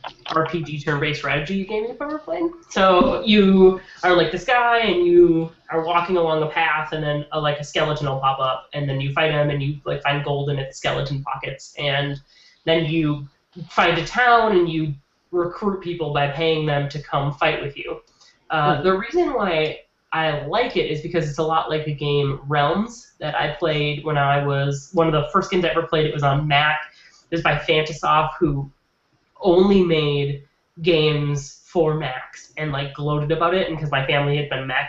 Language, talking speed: English, 200 wpm